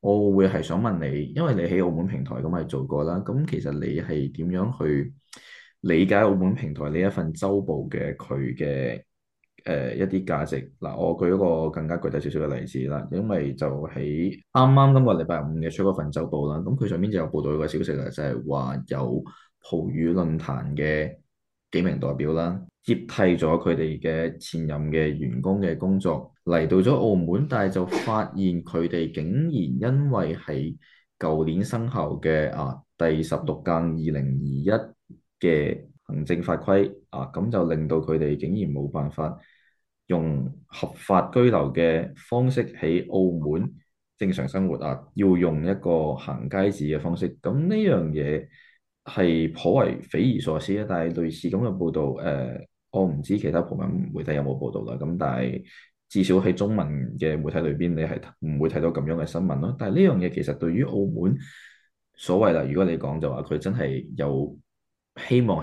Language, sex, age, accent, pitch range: Chinese, male, 10-29, native, 75-95 Hz